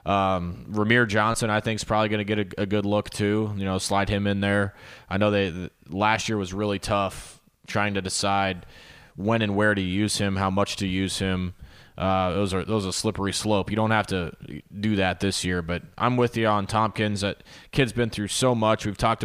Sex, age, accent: male, 20-39, American